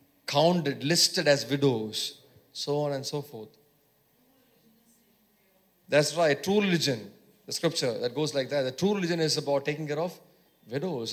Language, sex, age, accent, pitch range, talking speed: English, male, 30-49, Indian, 140-175 Hz, 150 wpm